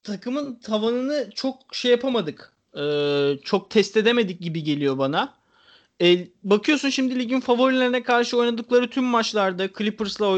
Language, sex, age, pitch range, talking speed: Turkish, male, 30-49, 190-245 Hz, 125 wpm